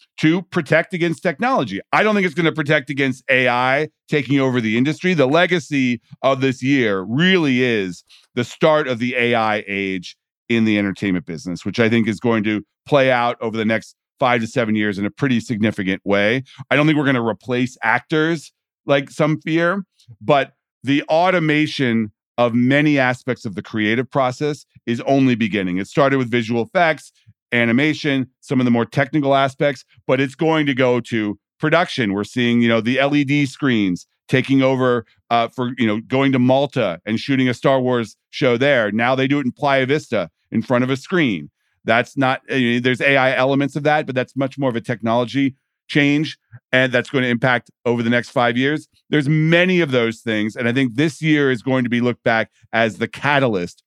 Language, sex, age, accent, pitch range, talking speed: English, male, 40-59, American, 115-145 Hz, 195 wpm